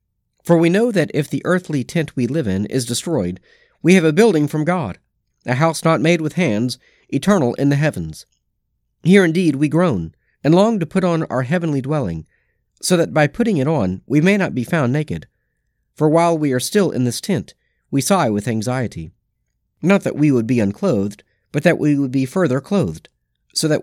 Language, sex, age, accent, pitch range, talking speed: English, male, 40-59, American, 120-170 Hz, 200 wpm